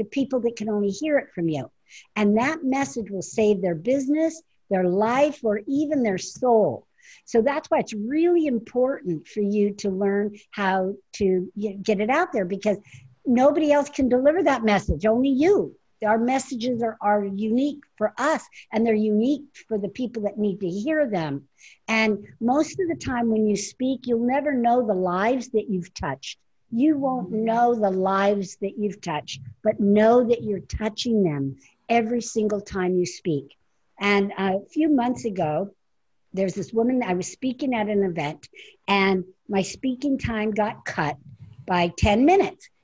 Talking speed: 170 wpm